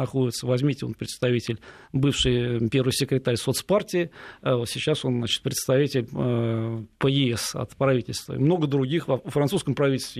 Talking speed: 125 wpm